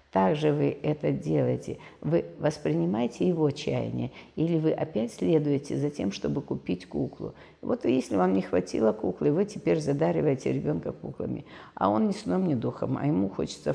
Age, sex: 50-69, female